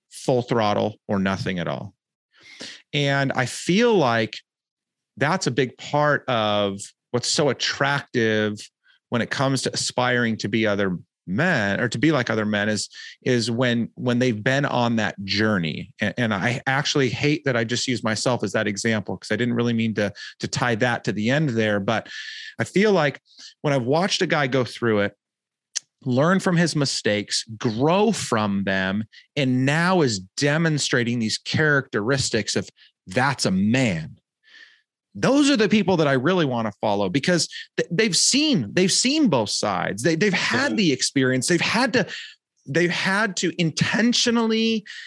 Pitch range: 115-180 Hz